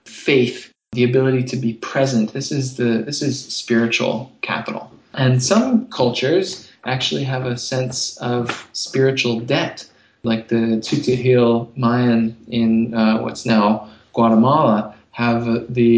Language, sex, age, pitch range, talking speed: English, male, 20-39, 115-130 Hz, 135 wpm